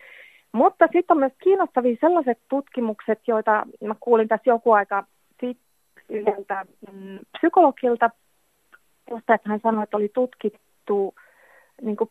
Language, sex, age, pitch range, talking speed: Finnish, female, 30-49, 195-245 Hz, 120 wpm